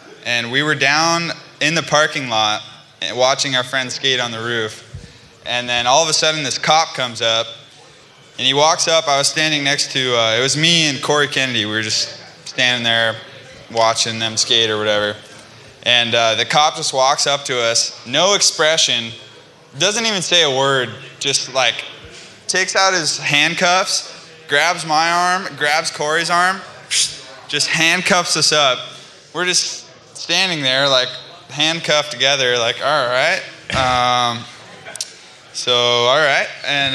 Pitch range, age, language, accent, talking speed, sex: 120-160 Hz, 20-39, English, American, 155 wpm, male